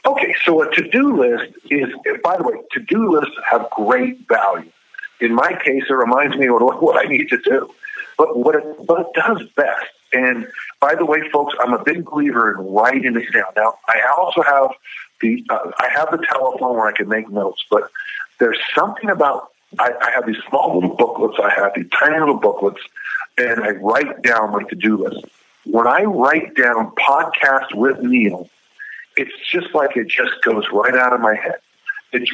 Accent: American